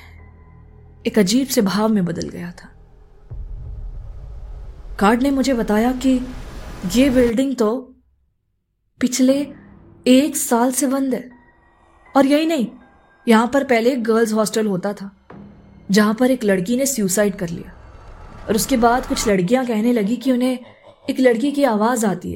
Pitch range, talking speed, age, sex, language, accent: 185-250 Hz, 145 wpm, 20-39, female, Hindi, native